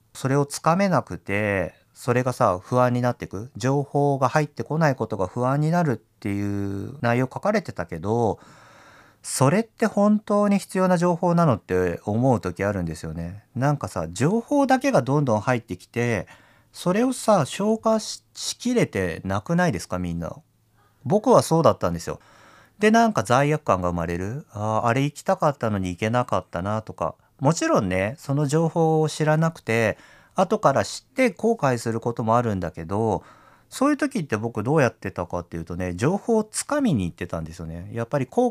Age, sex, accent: 40-59, male, native